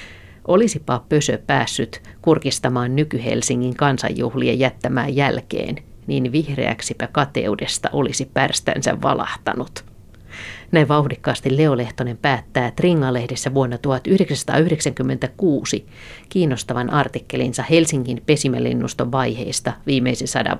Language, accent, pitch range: Finnish, native, 125-150 Hz